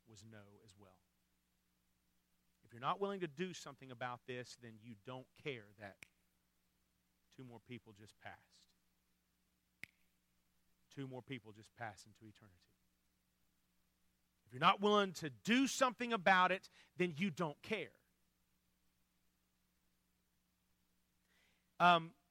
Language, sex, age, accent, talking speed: English, male, 40-59, American, 120 wpm